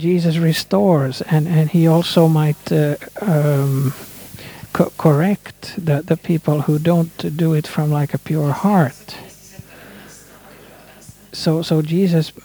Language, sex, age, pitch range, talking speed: Swedish, male, 50-69, 155-185 Hz, 125 wpm